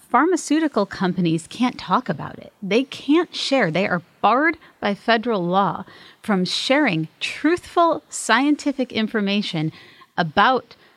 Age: 30-49